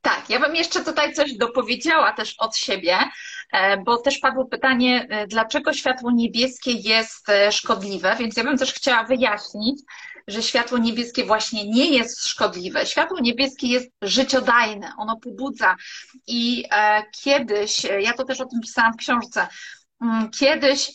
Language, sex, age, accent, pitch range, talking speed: Polish, female, 30-49, native, 225-265 Hz, 140 wpm